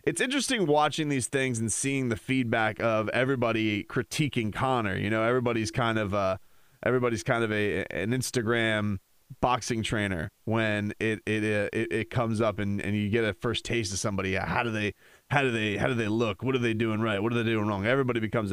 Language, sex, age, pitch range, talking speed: English, male, 30-49, 105-130 Hz, 210 wpm